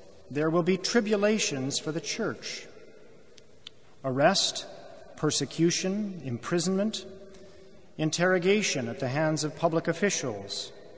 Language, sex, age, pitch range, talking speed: English, male, 40-59, 140-195 Hz, 95 wpm